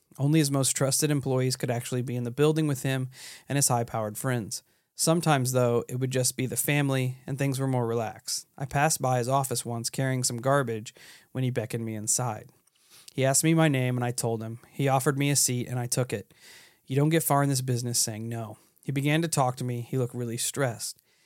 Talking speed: 230 wpm